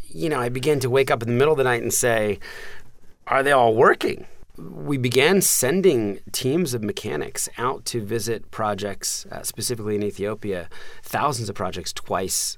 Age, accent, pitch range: 30-49, American, 105-130 Hz